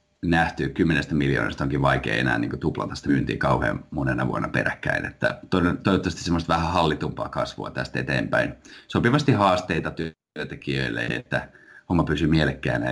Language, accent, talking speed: Finnish, native, 135 wpm